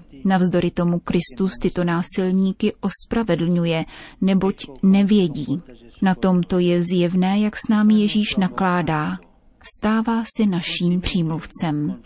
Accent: native